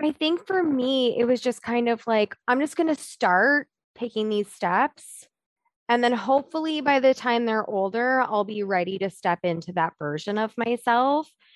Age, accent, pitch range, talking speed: 20-39, American, 185-245 Hz, 185 wpm